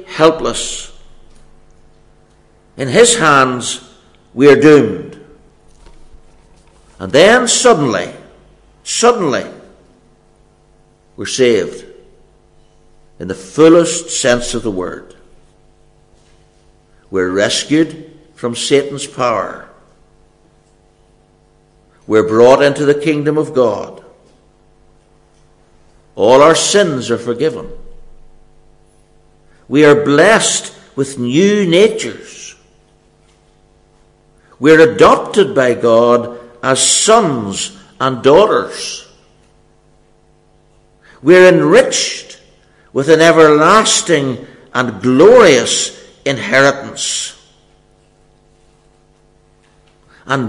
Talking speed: 75 wpm